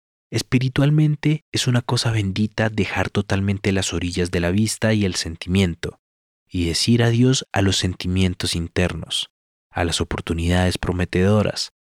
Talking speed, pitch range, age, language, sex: 130 wpm, 85-110 Hz, 30-49, English, male